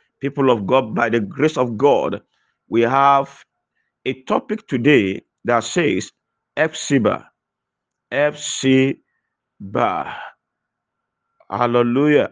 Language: English